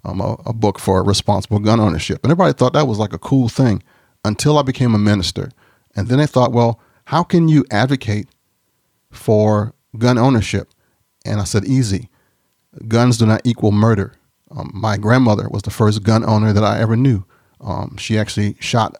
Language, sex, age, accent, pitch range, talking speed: English, male, 30-49, American, 105-125 Hz, 185 wpm